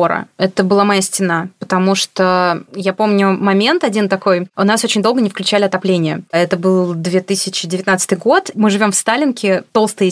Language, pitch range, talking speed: Russian, 190-230 Hz, 160 wpm